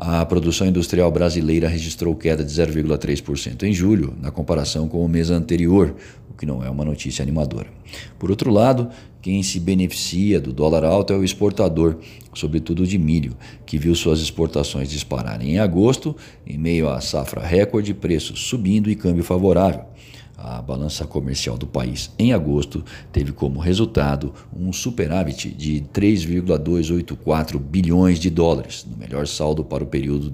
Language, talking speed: Portuguese, 155 wpm